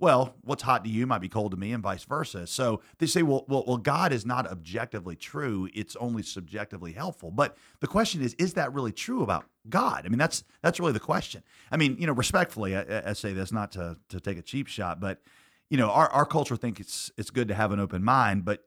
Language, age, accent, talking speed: English, 40-59, American, 250 wpm